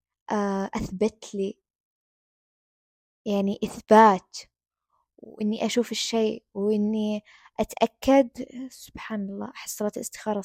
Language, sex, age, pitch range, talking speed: Arabic, female, 20-39, 205-245 Hz, 75 wpm